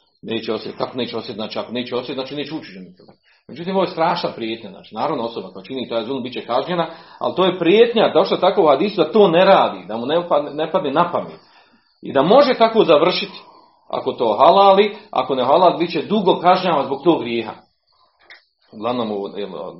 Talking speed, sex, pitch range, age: 210 wpm, male, 120-190 Hz, 40-59